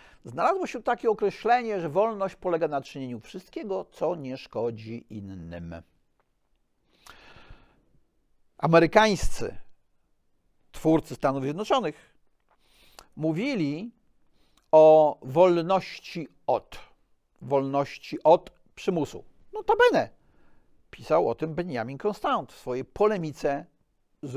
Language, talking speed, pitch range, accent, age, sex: Polish, 90 wpm, 135-200 Hz, native, 50-69, male